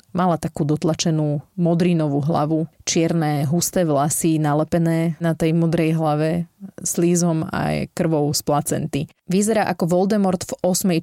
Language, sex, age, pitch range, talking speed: Slovak, female, 20-39, 155-180 Hz, 125 wpm